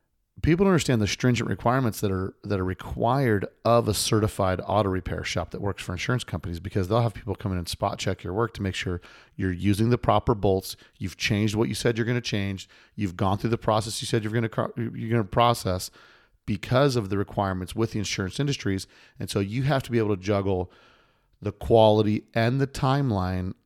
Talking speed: 215 wpm